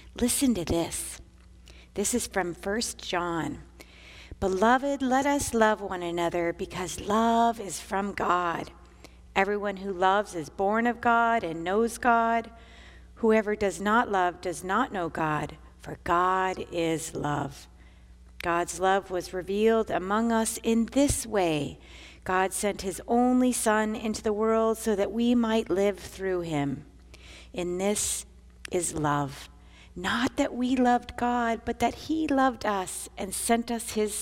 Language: English